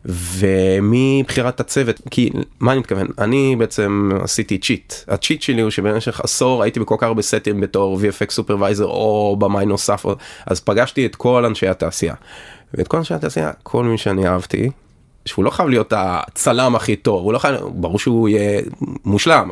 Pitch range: 100-120 Hz